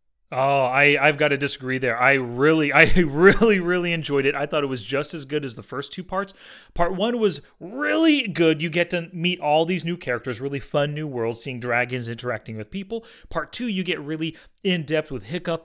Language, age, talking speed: English, 30-49, 215 wpm